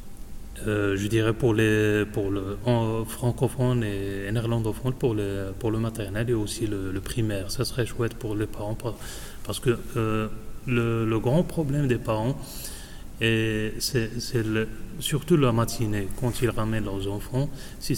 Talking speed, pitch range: 160 wpm, 105-120 Hz